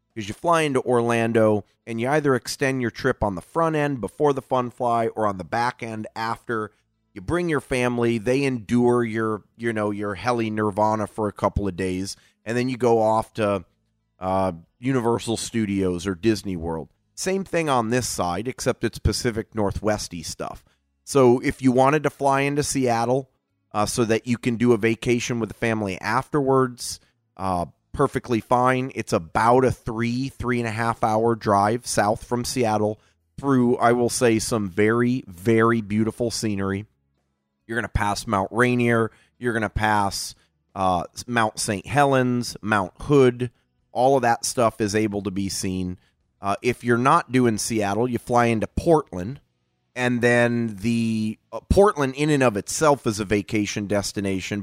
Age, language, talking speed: 30-49, English, 170 wpm